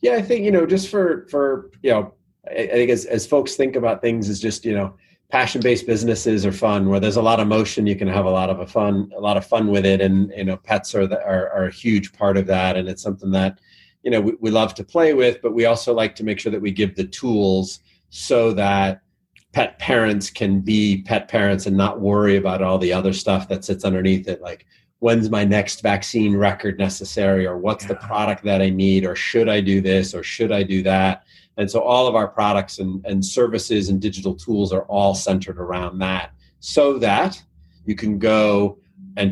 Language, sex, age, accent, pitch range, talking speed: English, male, 30-49, American, 95-110 Hz, 230 wpm